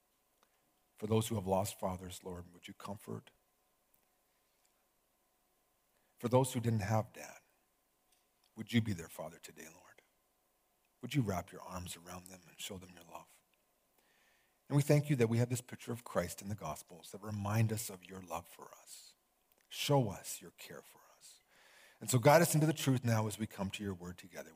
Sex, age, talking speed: male, 50-69, 190 wpm